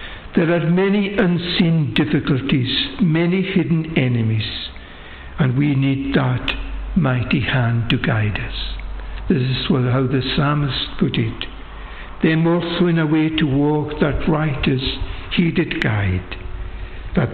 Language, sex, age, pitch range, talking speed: English, male, 60-79, 115-170 Hz, 130 wpm